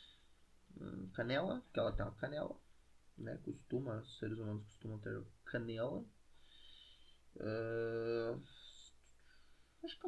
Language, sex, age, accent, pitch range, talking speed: Portuguese, male, 20-39, Brazilian, 105-140 Hz, 100 wpm